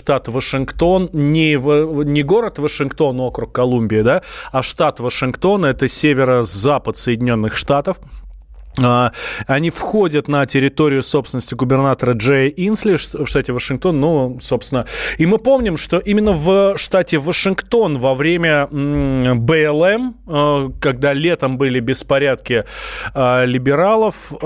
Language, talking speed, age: Russian, 115 wpm, 20-39